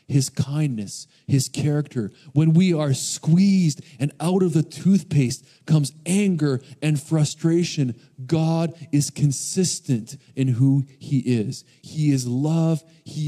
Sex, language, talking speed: male, English, 125 wpm